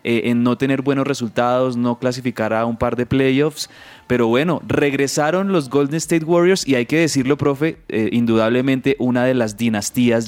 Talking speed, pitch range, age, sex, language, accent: 175 wpm, 115-150 Hz, 20-39, male, Spanish, Colombian